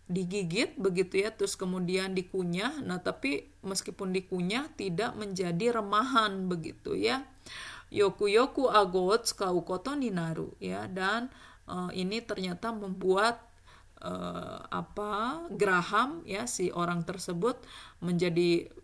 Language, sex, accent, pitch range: Japanese, female, Indonesian, 175-215 Hz